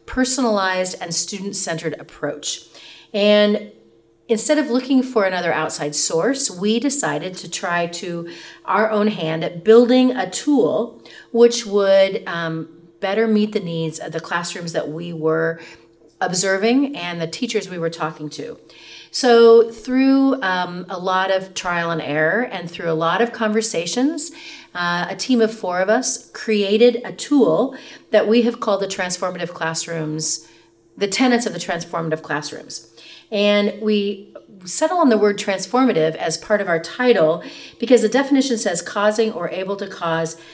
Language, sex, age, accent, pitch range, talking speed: English, female, 40-59, American, 170-230 Hz, 155 wpm